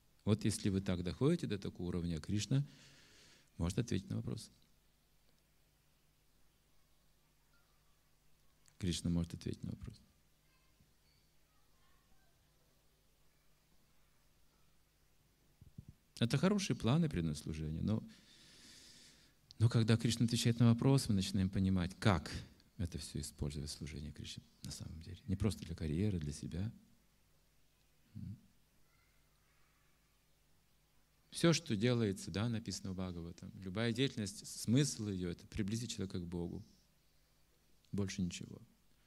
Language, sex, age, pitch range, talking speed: Russian, male, 50-69, 85-120 Hz, 105 wpm